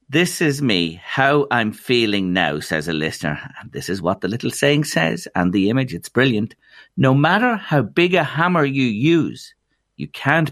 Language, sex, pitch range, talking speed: English, male, 95-145 Hz, 190 wpm